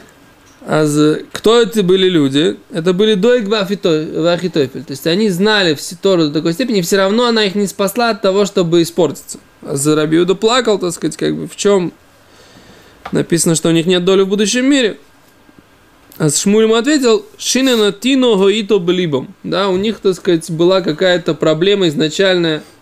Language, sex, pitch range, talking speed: Russian, male, 160-210 Hz, 170 wpm